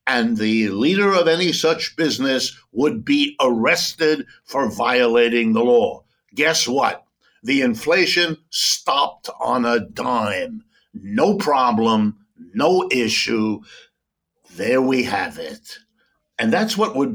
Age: 60-79